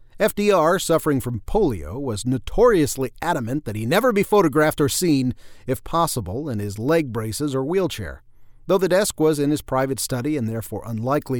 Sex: male